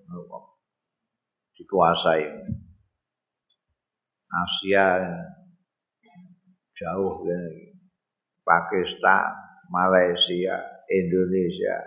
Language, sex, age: Indonesian, male, 50-69